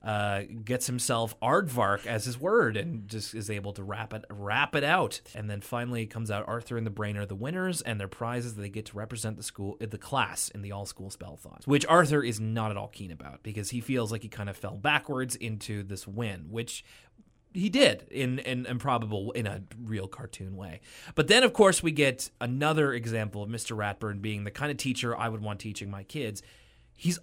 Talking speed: 225 wpm